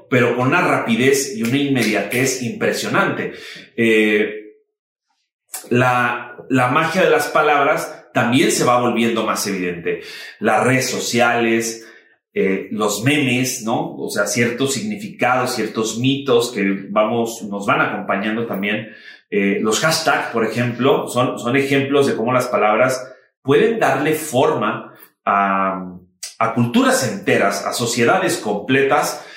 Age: 30-49